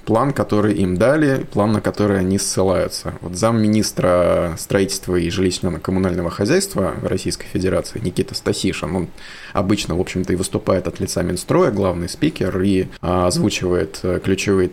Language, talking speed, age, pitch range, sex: Russian, 140 wpm, 20-39, 90-110 Hz, male